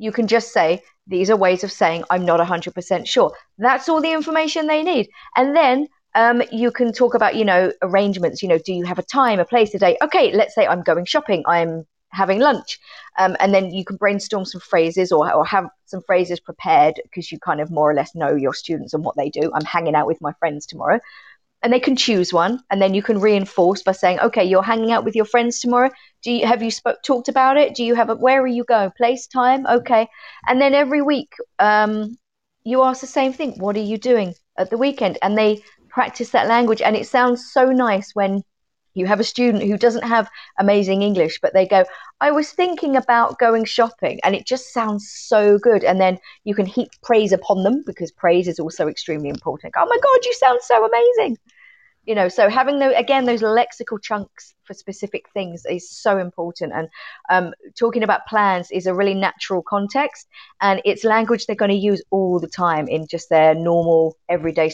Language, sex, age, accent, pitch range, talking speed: English, female, 40-59, British, 185-245 Hz, 220 wpm